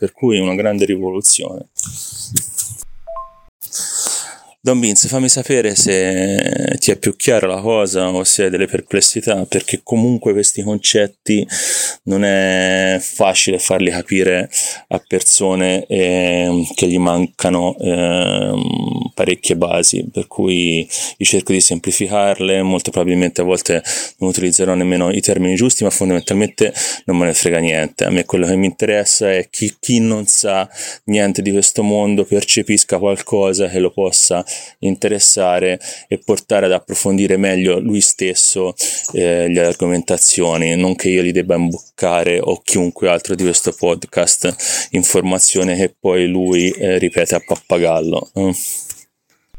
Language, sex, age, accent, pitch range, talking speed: Italian, male, 30-49, native, 90-105 Hz, 135 wpm